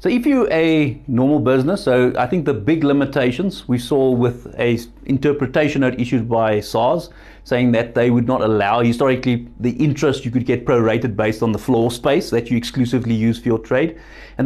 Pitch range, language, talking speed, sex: 115-140 Hz, English, 190 wpm, male